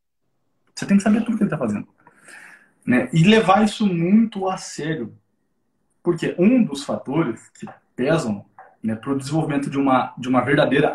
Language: Portuguese